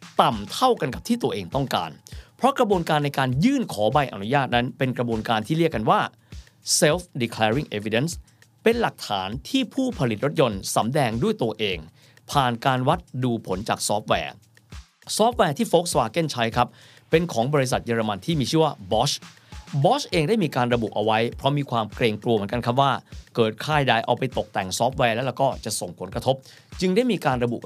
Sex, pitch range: male, 115-155 Hz